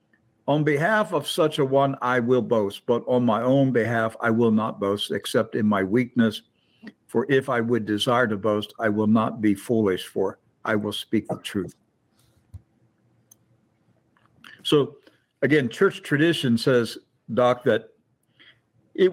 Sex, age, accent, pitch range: male, 60-79, American, 115-145 Hz